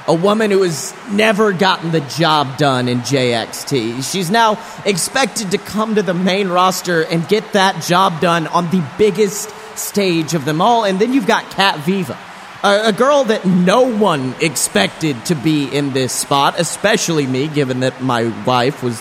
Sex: male